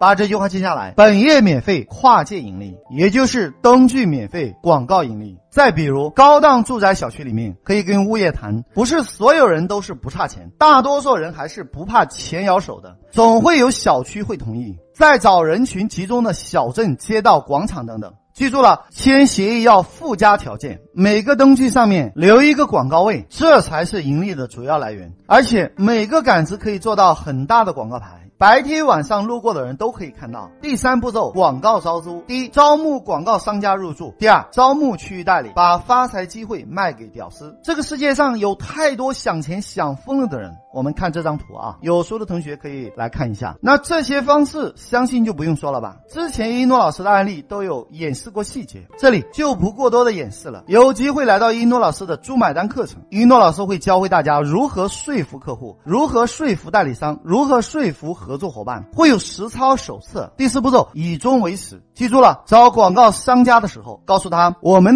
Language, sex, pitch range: Chinese, male, 165-255 Hz